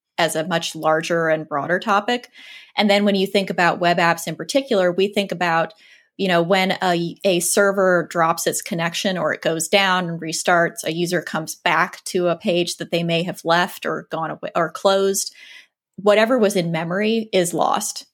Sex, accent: female, American